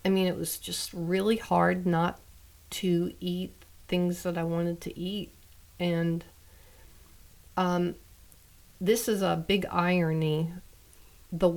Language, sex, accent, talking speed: English, female, American, 125 wpm